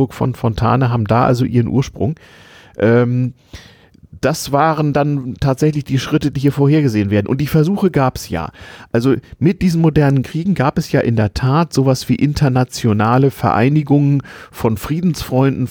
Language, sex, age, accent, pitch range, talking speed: German, male, 40-59, German, 115-140 Hz, 155 wpm